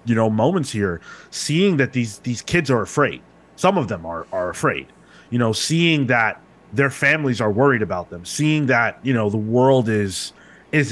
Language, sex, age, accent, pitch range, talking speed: English, male, 30-49, American, 120-150 Hz, 190 wpm